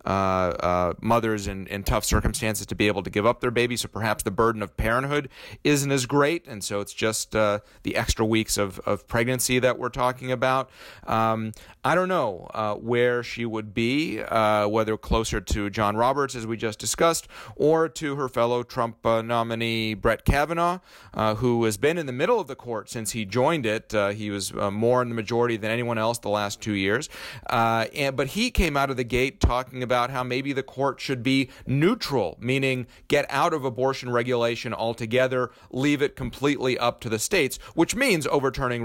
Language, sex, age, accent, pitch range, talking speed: English, male, 30-49, American, 105-130 Hz, 205 wpm